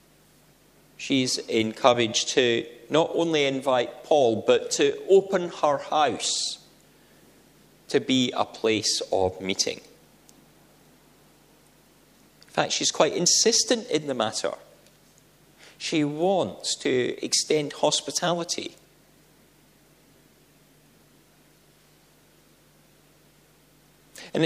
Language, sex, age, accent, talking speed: English, male, 40-59, British, 80 wpm